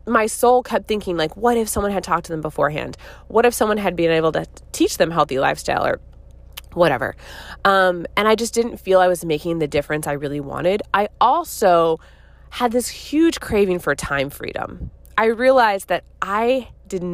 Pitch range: 155-195 Hz